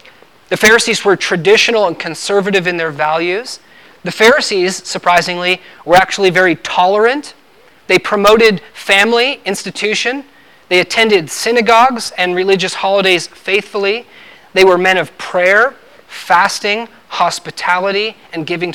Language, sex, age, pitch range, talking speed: English, male, 30-49, 170-205 Hz, 115 wpm